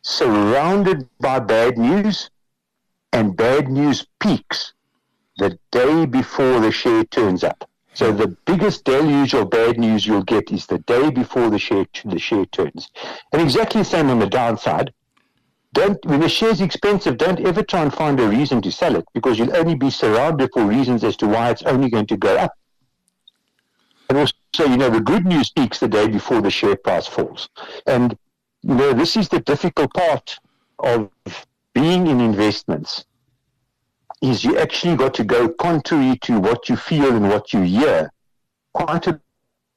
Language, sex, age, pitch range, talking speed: English, male, 60-79, 110-160 Hz, 175 wpm